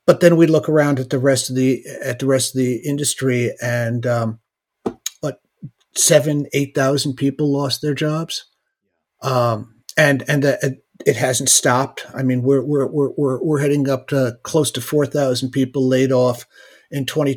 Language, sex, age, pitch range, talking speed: English, male, 50-69, 125-150 Hz, 175 wpm